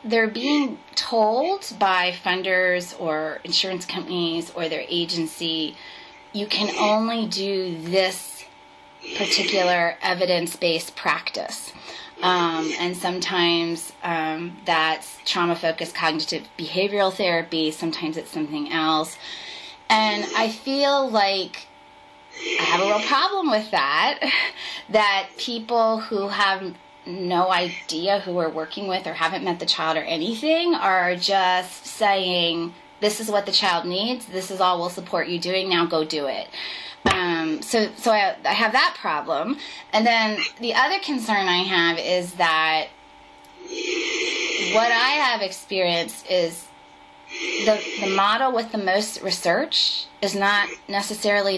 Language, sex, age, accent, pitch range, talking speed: English, female, 20-39, American, 165-220 Hz, 130 wpm